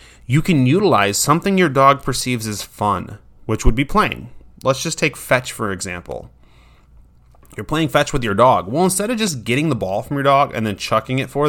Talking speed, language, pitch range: 210 wpm, English, 105-140 Hz